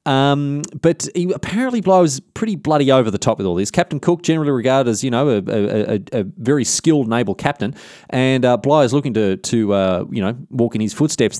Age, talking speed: 20-39, 225 wpm